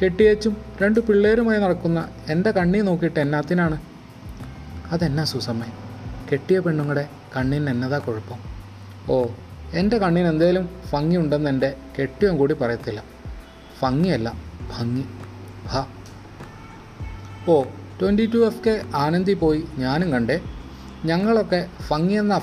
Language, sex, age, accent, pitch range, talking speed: Malayalam, male, 30-49, native, 115-175 Hz, 95 wpm